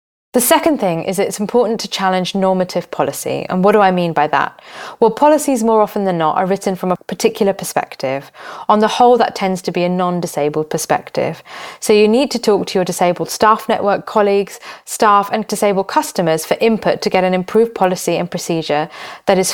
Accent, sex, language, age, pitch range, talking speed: British, female, English, 20-39, 180-210 Hz, 200 wpm